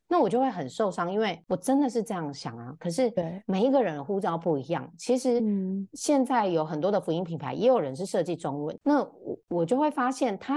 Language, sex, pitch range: Chinese, female, 160-245 Hz